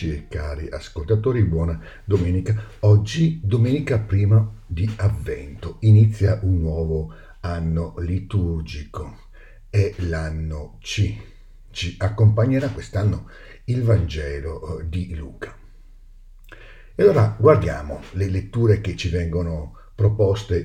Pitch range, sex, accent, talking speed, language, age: 85-110 Hz, male, native, 100 wpm, Italian, 50-69